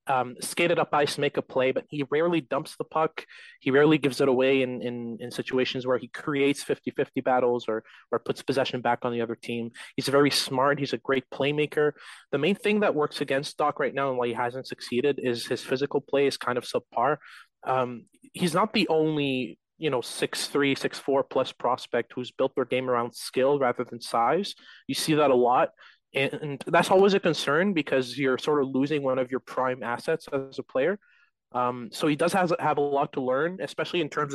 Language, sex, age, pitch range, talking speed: English, male, 20-39, 125-150 Hz, 215 wpm